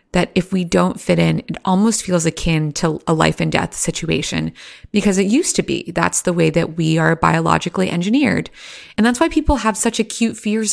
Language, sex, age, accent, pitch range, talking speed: English, female, 30-49, American, 165-215 Hz, 205 wpm